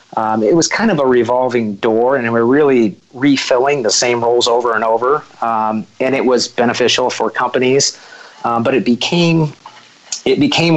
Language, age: English, 30-49